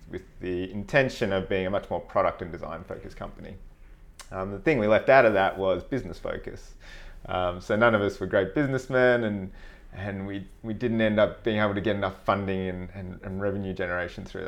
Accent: Australian